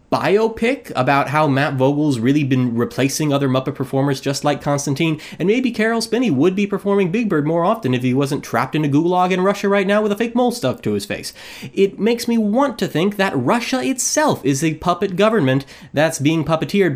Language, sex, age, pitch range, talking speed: English, male, 30-49, 130-205 Hz, 210 wpm